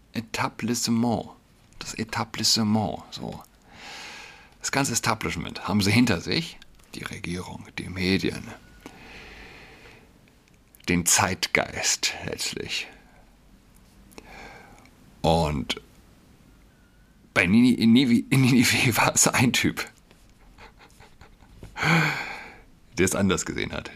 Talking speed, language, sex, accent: 75 wpm, German, male, German